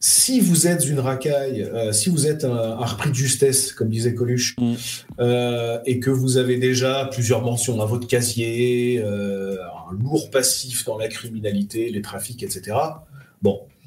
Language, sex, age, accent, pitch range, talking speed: French, male, 30-49, French, 110-140 Hz, 170 wpm